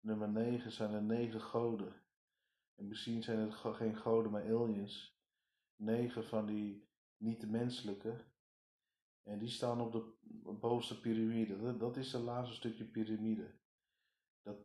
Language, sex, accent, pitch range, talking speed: Dutch, male, Dutch, 105-115 Hz, 135 wpm